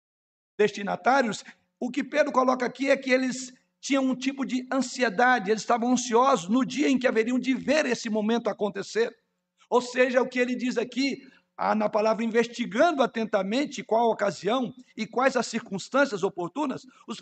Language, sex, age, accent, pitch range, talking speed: Portuguese, male, 60-79, Brazilian, 200-255 Hz, 165 wpm